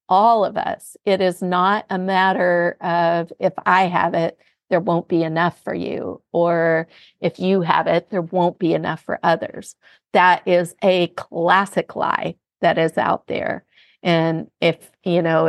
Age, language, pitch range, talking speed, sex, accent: 40-59, English, 170-195 Hz, 165 wpm, female, American